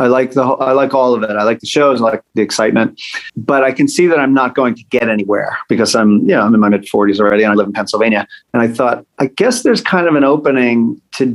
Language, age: English, 40-59